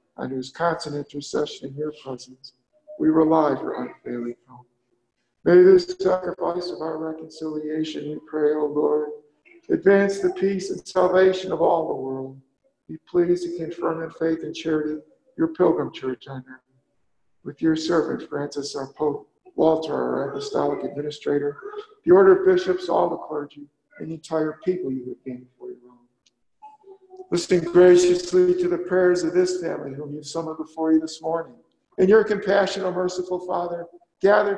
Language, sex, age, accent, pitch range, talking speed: English, male, 50-69, American, 145-180 Hz, 160 wpm